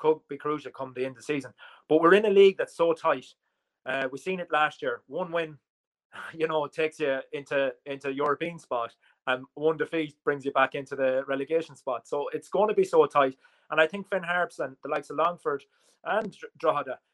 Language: English